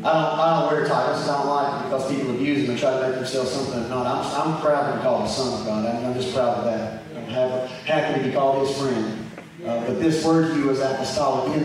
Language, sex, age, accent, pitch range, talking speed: English, male, 30-49, American, 145-205 Hz, 295 wpm